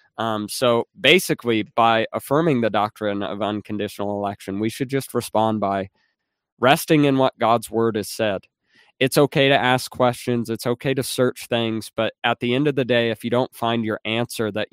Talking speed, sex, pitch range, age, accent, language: 190 wpm, male, 105-130 Hz, 20-39, American, English